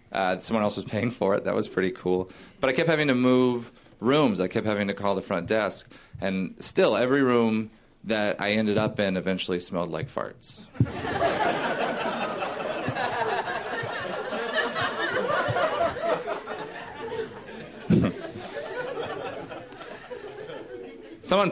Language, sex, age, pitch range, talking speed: English, male, 30-49, 95-125 Hz, 110 wpm